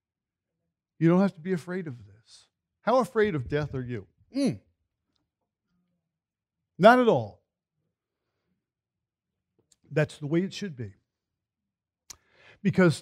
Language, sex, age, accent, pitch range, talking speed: English, male, 50-69, American, 150-205 Hz, 115 wpm